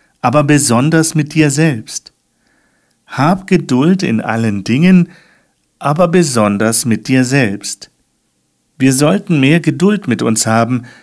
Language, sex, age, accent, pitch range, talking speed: German, male, 50-69, German, 125-165 Hz, 120 wpm